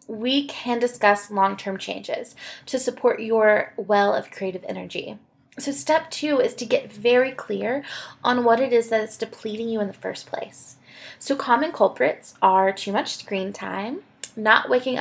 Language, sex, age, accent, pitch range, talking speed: English, female, 20-39, American, 205-260 Hz, 170 wpm